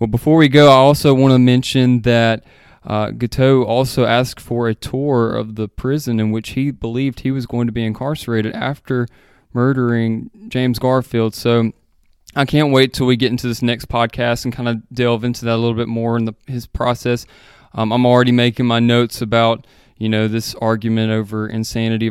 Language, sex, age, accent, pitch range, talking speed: English, male, 20-39, American, 115-125 Hz, 195 wpm